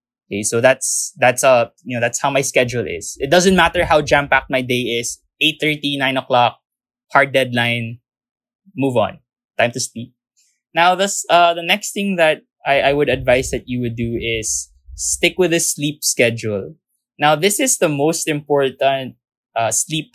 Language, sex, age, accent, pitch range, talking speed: English, male, 20-39, Filipino, 125-160 Hz, 175 wpm